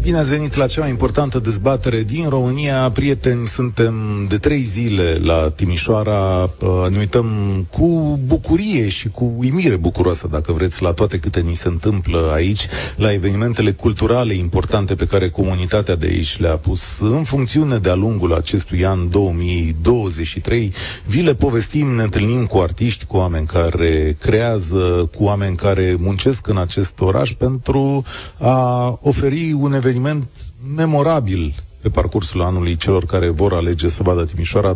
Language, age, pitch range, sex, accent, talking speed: Romanian, 30-49, 90-125 Hz, male, native, 150 wpm